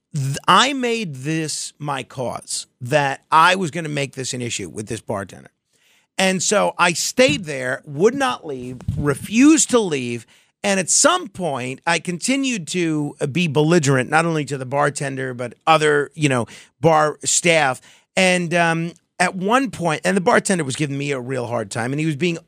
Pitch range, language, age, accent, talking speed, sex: 140-195 Hz, English, 50-69, American, 180 wpm, male